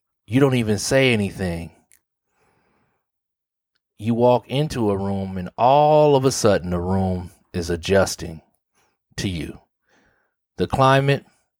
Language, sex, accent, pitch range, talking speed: English, male, American, 100-130 Hz, 120 wpm